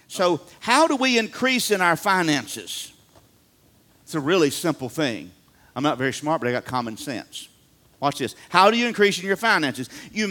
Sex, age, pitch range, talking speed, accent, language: male, 50-69, 150-225 Hz, 185 wpm, American, English